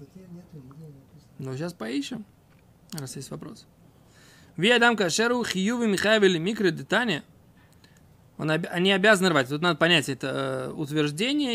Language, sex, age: Russian, male, 20-39